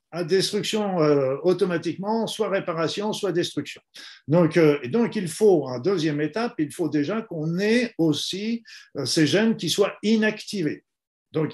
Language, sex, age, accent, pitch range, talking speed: French, male, 50-69, French, 150-205 Hz, 160 wpm